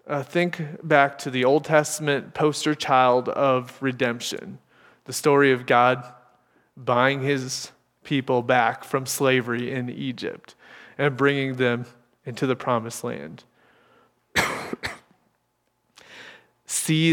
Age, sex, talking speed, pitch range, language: 20-39, male, 110 wpm, 125-140 Hz, English